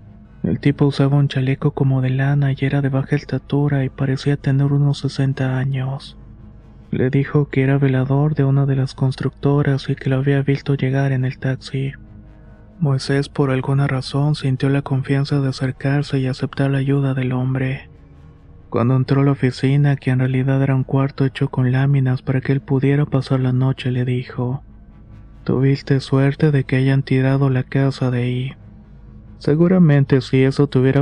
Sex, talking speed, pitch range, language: male, 175 wpm, 130-140 Hz, Spanish